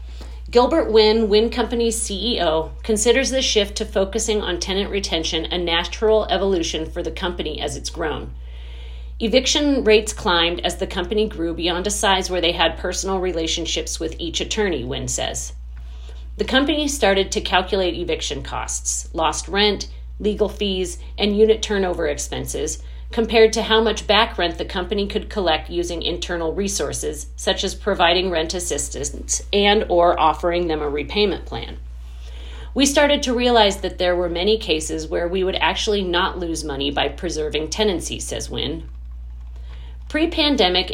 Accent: American